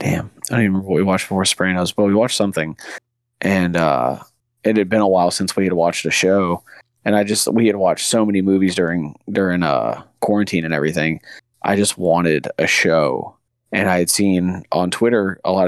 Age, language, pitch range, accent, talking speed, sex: 20-39, English, 90-105 Hz, American, 215 wpm, male